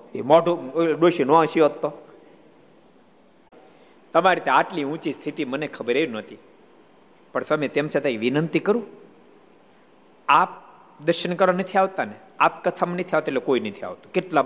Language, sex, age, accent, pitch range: Gujarati, male, 50-69, native, 150-215 Hz